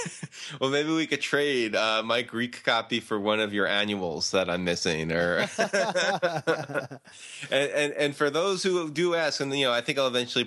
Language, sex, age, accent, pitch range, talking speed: English, male, 20-39, American, 100-120 Hz, 190 wpm